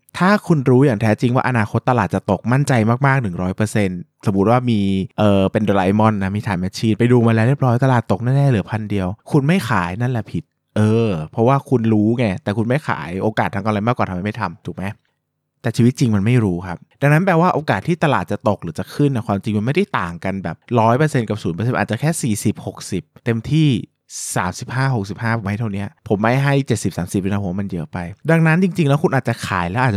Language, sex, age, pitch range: Thai, male, 20-39, 100-140 Hz